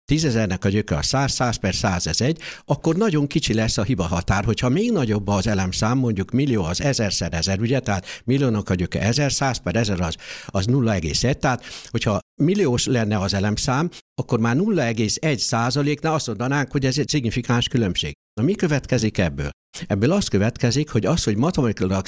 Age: 60-79